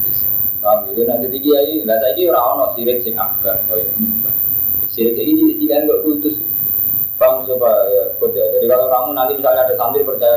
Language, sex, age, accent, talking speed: Indonesian, male, 20-39, native, 85 wpm